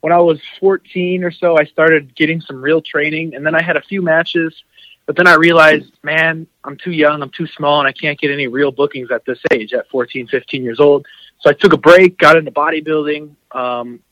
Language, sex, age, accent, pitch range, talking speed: English, male, 30-49, American, 125-150 Hz, 230 wpm